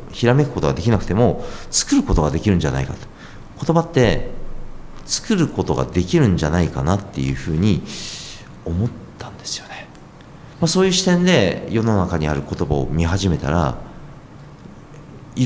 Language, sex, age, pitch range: Japanese, male, 40-59, 85-135 Hz